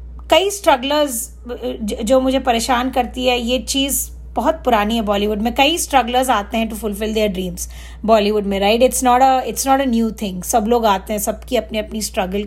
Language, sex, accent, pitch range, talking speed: Hindi, female, native, 215-255 Hz, 195 wpm